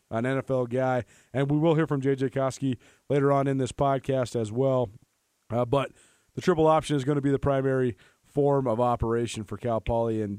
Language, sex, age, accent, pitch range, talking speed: English, male, 30-49, American, 120-145 Hz, 200 wpm